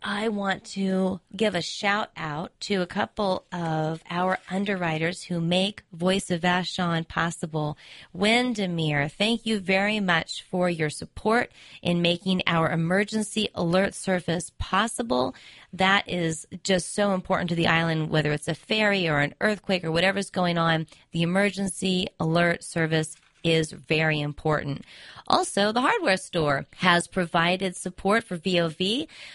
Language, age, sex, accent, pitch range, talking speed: English, 30-49, female, American, 165-205 Hz, 140 wpm